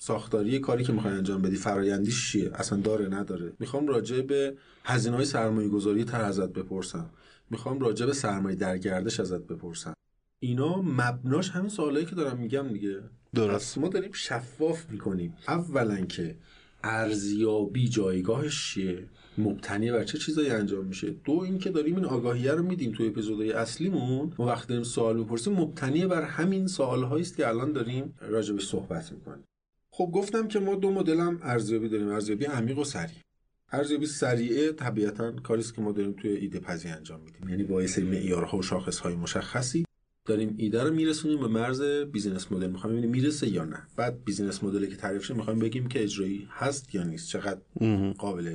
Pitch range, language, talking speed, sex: 100-150 Hz, Persian, 170 wpm, male